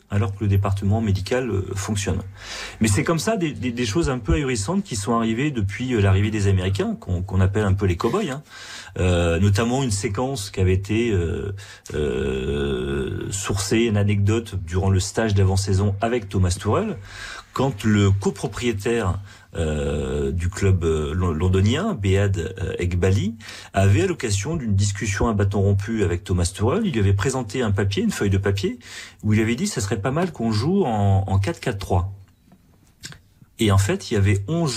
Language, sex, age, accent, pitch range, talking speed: French, male, 40-59, French, 95-115 Hz, 180 wpm